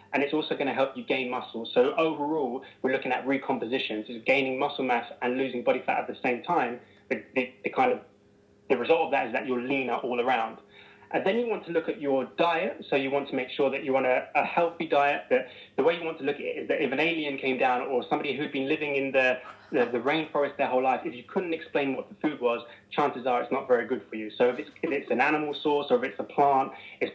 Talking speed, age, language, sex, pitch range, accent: 270 wpm, 20-39, English, male, 125-155 Hz, British